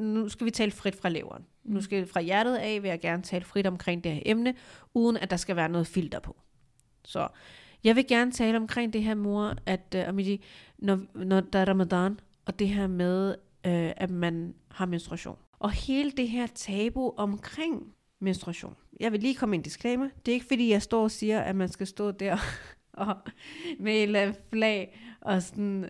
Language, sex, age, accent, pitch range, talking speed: Danish, female, 30-49, native, 190-230 Hz, 205 wpm